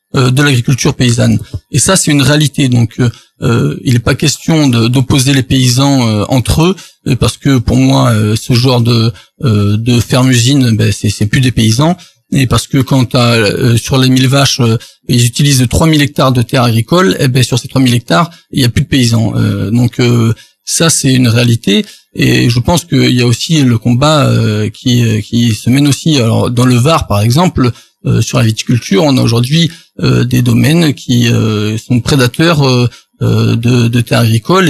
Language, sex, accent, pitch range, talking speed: French, male, French, 115-140 Hz, 200 wpm